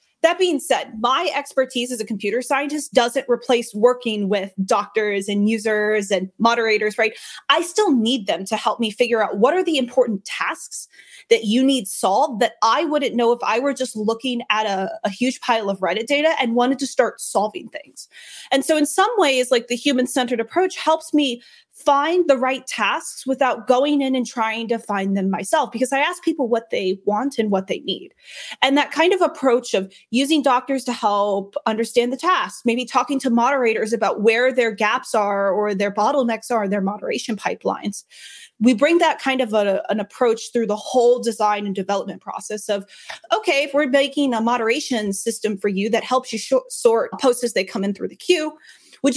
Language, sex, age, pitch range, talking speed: English, female, 20-39, 215-275 Hz, 200 wpm